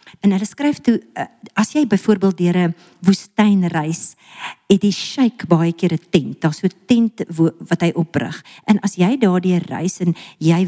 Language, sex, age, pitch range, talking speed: English, female, 50-69, 165-205 Hz, 180 wpm